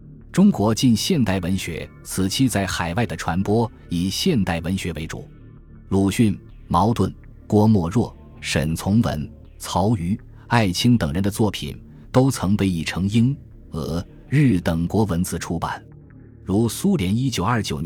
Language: Chinese